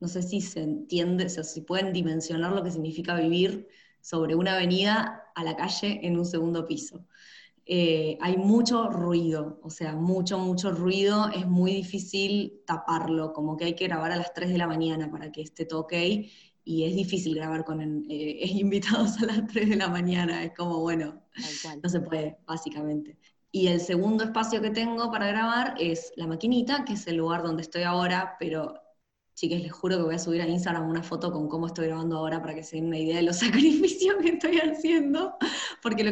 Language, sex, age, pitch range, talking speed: Spanish, female, 20-39, 165-205 Hz, 205 wpm